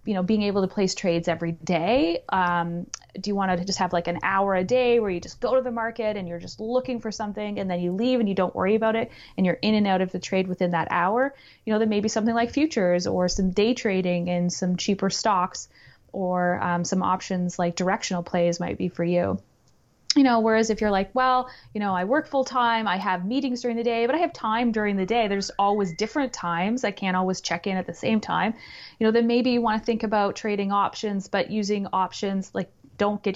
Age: 30-49